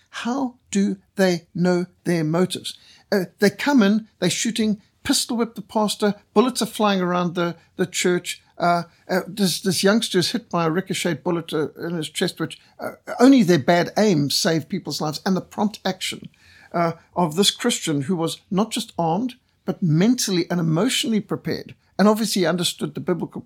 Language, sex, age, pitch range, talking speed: English, male, 60-79, 170-210 Hz, 175 wpm